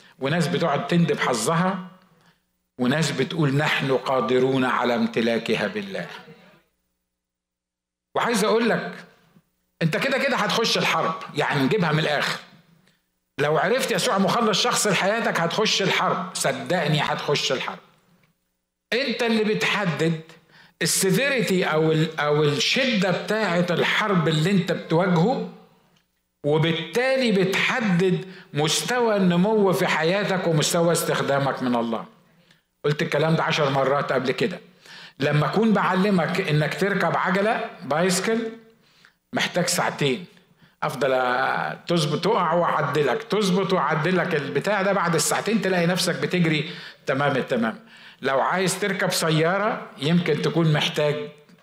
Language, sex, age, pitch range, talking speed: Arabic, male, 50-69, 145-190 Hz, 110 wpm